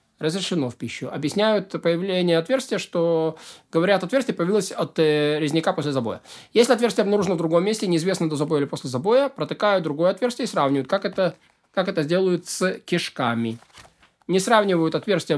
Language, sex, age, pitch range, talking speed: Russian, male, 20-39, 155-195 Hz, 165 wpm